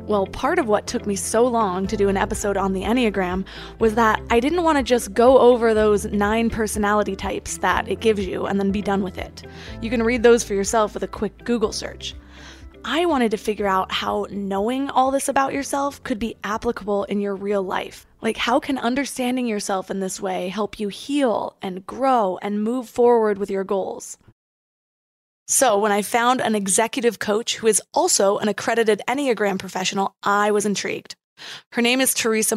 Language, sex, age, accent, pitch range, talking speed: English, female, 20-39, American, 200-240 Hz, 195 wpm